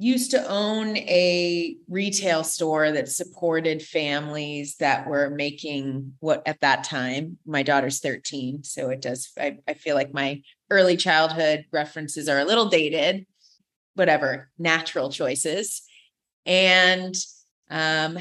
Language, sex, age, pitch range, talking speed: English, female, 30-49, 155-195 Hz, 130 wpm